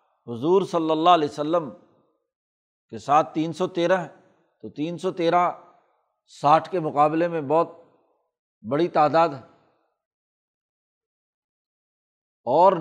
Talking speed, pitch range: 110 wpm, 145-185 Hz